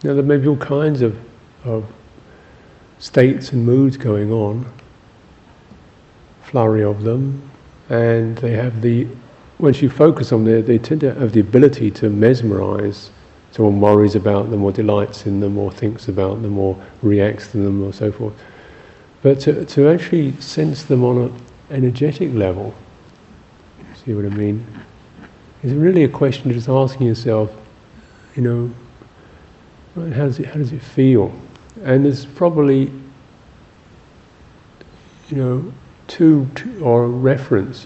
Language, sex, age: English, male, 50-69